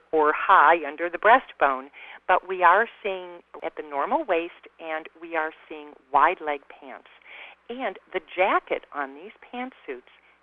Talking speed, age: 150 wpm, 50-69